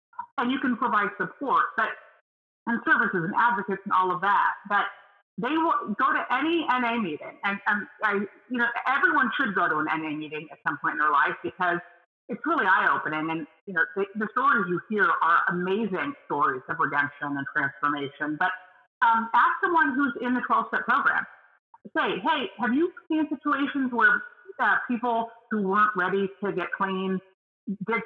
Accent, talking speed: American, 175 wpm